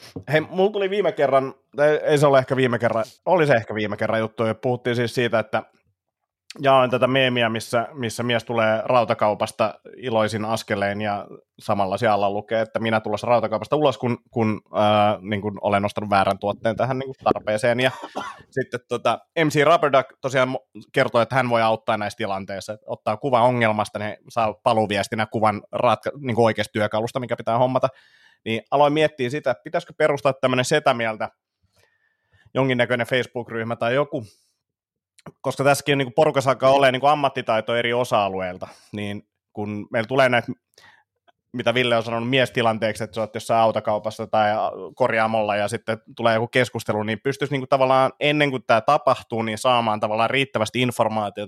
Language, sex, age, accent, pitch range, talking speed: Finnish, male, 30-49, native, 110-130 Hz, 165 wpm